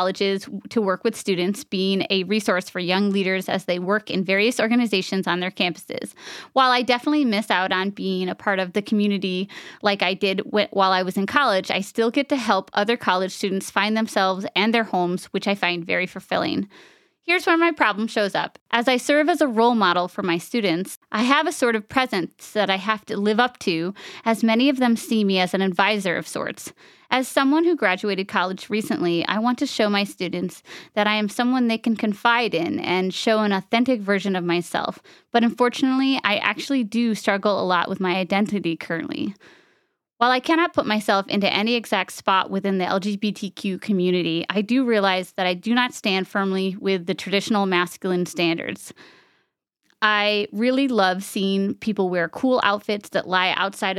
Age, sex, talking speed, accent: 20-39, female, 195 wpm, American